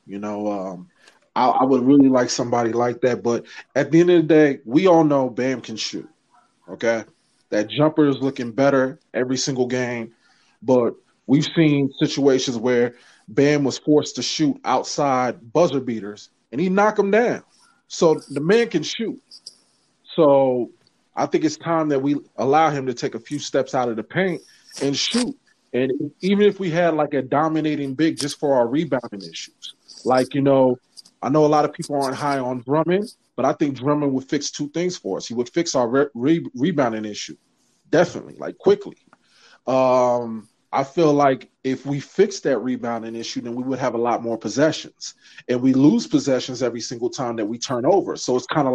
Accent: American